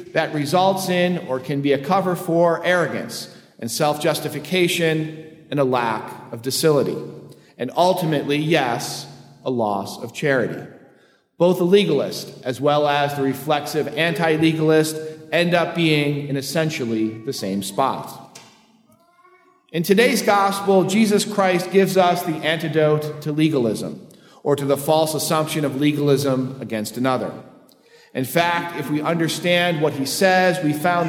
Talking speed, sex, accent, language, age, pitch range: 135 wpm, male, American, English, 40-59, 140-180 Hz